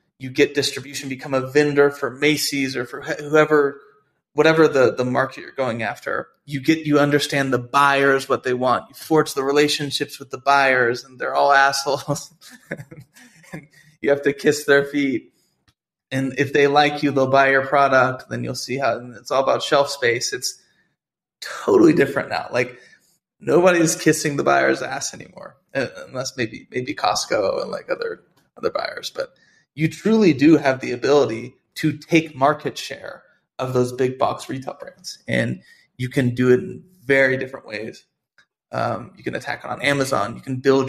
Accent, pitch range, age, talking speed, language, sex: American, 130-155 Hz, 20-39, 175 wpm, English, male